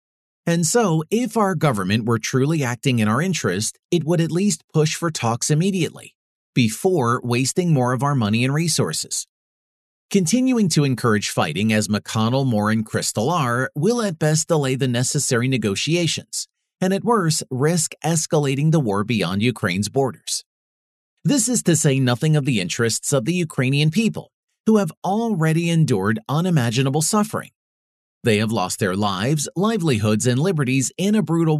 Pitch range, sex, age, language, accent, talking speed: 115-165 Hz, male, 40-59, English, American, 160 wpm